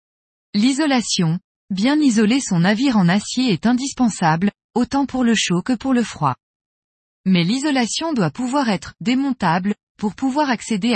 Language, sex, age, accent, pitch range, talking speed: French, female, 20-39, French, 185-250 Hz, 140 wpm